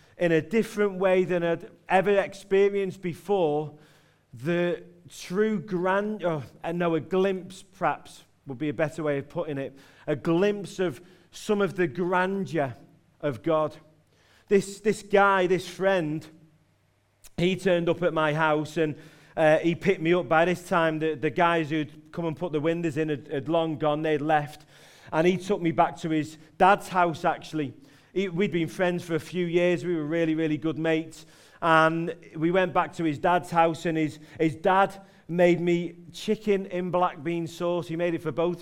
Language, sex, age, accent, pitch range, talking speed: English, male, 40-59, British, 155-190 Hz, 180 wpm